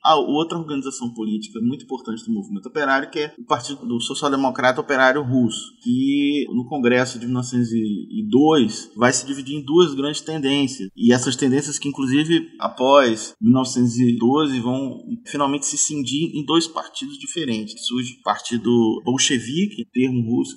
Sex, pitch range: male, 120-170 Hz